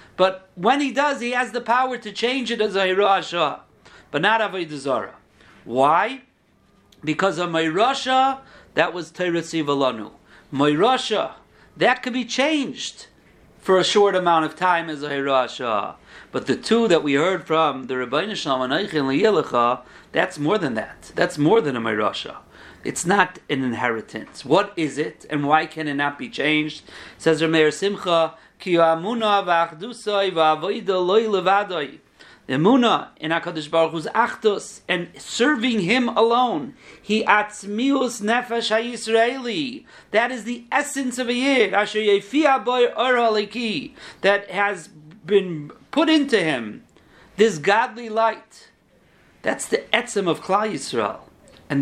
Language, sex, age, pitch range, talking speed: English, male, 50-69, 160-240 Hz, 145 wpm